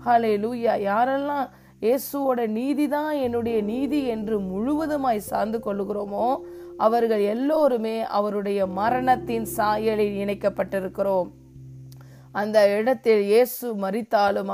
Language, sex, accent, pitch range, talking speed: Tamil, female, native, 205-265 Hz, 55 wpm